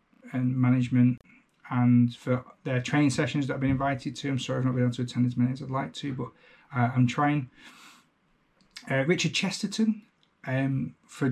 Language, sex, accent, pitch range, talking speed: English, male, British, 125-140 Hz, 185 wpm